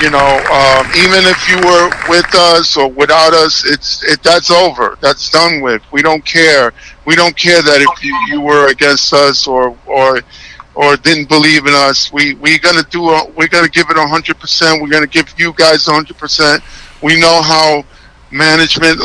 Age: 50-69